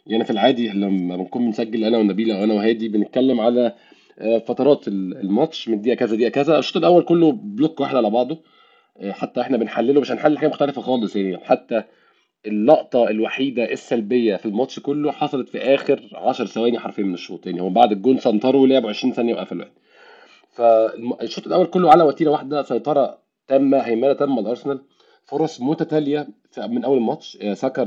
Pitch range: 105-135 Hz